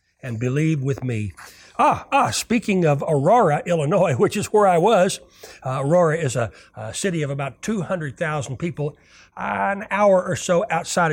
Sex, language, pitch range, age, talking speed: male, English, 130-180 Hz, 60-79, 165 wpm